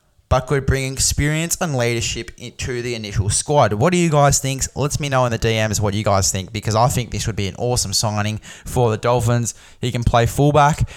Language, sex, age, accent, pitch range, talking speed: English, male, 10-29, Australian, 105-130 Hz, 225 wpm